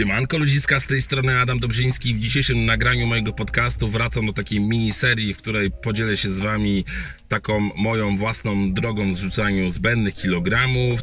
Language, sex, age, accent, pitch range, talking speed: Polish, male, 30-49, native, 95-120 Hz, 160 wpm